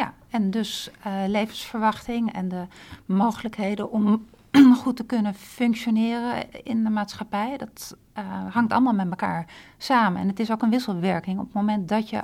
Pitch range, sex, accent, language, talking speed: 195-230 Hz, female, Dutch, Dutch, 165 wpm